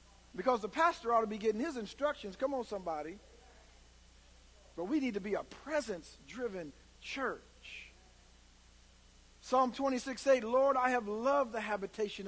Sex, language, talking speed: male, English, 140 wpm